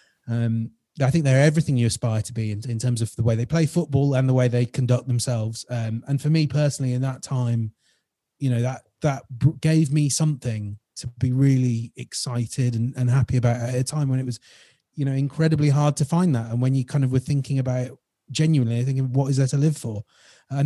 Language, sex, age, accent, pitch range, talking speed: English, male, 30-49, British, 115-140 Hz, 225 wpm